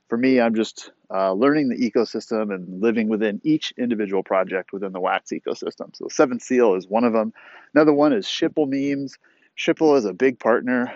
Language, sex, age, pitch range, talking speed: English, male, 30-49, 110-150 Hz, 190 wpm